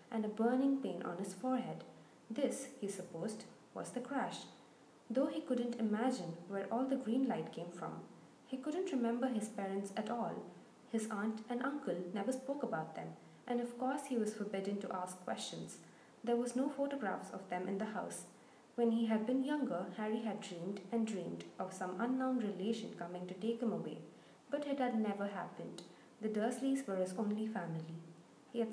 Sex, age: female, 20-39